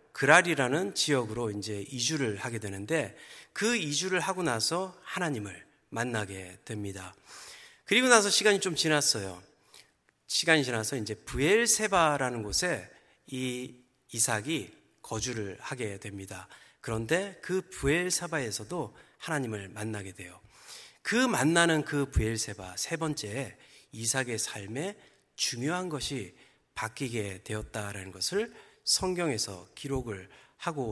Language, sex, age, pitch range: Korean, male, 40-59, 105-160 Hz